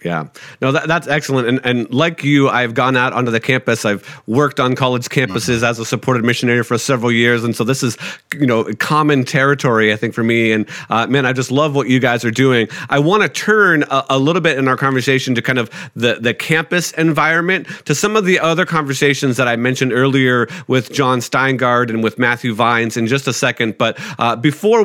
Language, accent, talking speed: English, American, 215 wpm